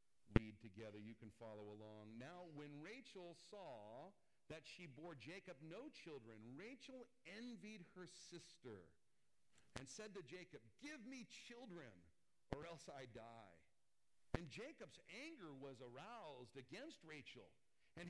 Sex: male